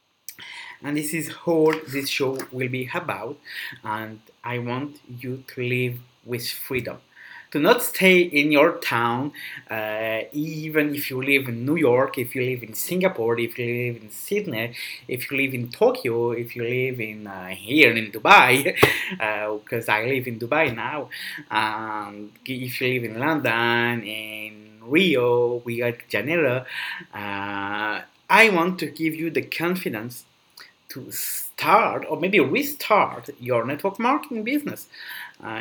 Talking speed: 150 wpm